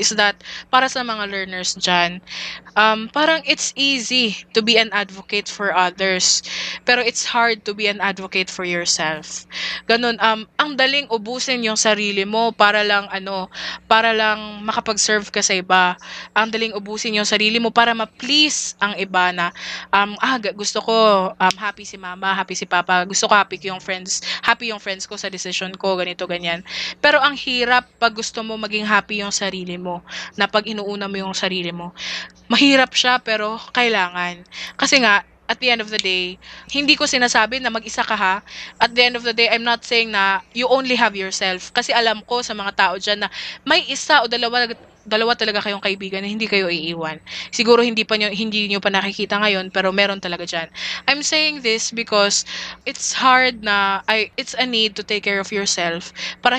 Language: Filipino